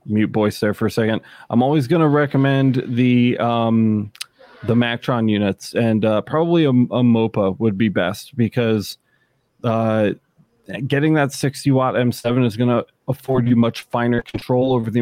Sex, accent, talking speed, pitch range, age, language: male, American, 170 wpm, 110-130 Hz, 30-49, English